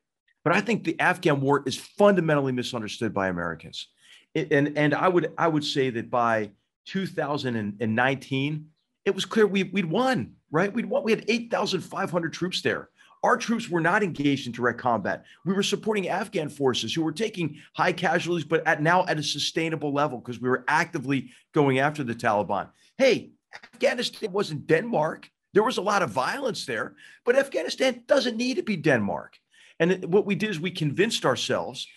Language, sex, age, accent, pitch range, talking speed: English, male, 40-59, American, 145-205 Hz, 175 wpm